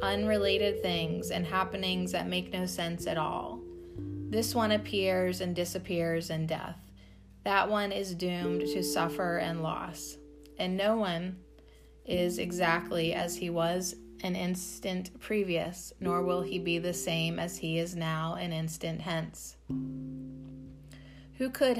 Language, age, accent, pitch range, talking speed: English, 30-49, American, 145-195 Hz, 140 wpm